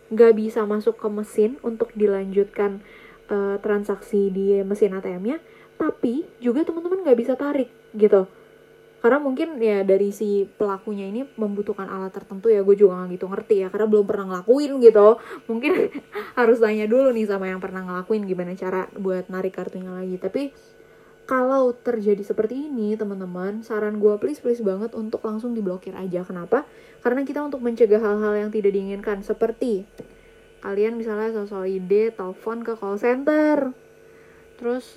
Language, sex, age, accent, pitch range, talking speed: Indonesian, female, 20-39, native, 200-250 Hz, 155 wpm